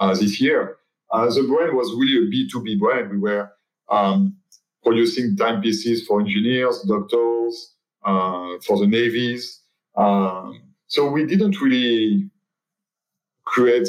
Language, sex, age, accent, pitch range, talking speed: English, male, 40-59, French, 110-180 Hz, 125 wpm